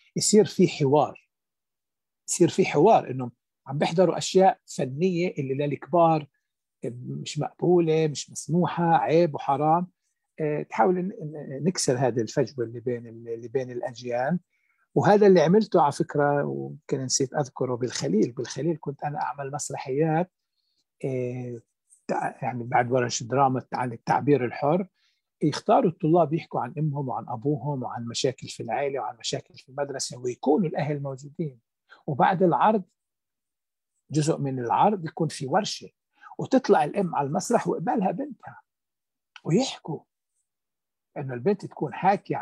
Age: 60-79